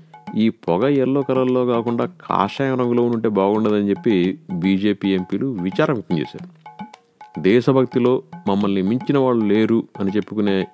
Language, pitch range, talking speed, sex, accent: Telugu, 100-125 Hz, 125 wpm, male, native